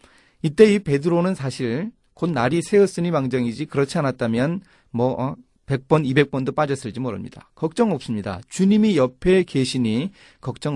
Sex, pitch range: male, 115-170 Hz